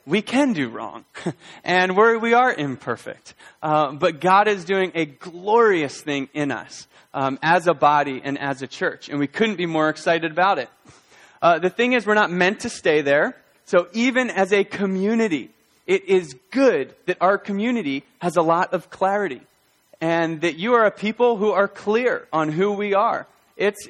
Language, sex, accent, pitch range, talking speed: English, male, American, 165-210 Hz, 190 wpm